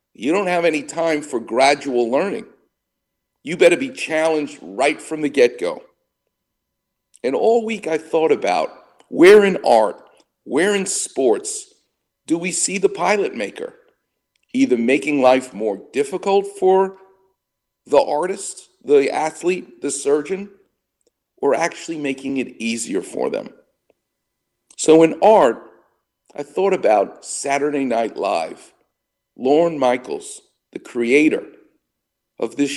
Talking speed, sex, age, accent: 125 wpm, male, 50-69, American